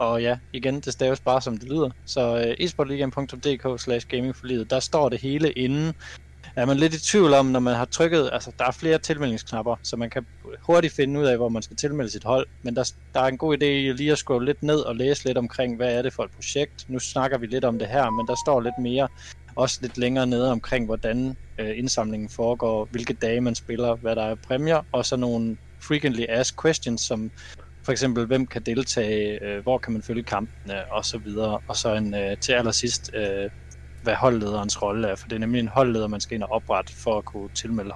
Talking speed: 220 wpm